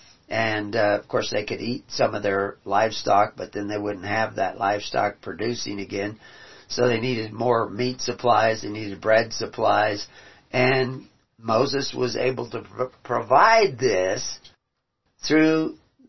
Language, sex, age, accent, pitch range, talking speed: English, male, 50-69, American, 120-140 Hz, 140 wpm